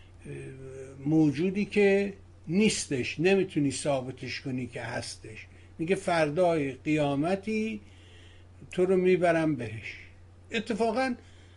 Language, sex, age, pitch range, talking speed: Persian, male, 60-79, 120-170 Hz, 85 wpm